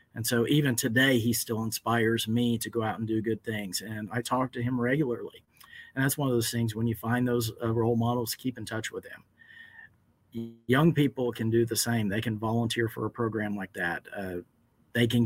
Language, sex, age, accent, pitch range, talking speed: English, male, 40-59, American, 110-125 Hz, 220 wpm